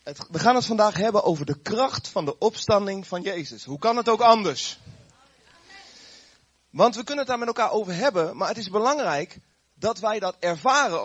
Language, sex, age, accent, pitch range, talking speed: Dutch, male, 30-49, Dutch, 165-225 Hz, 190 wpm